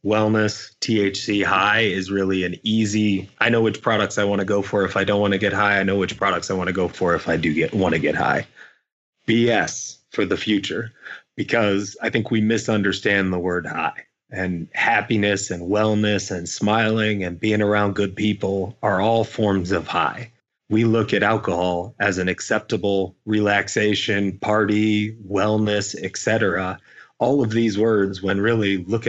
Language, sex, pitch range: English, male, 95-110 Hz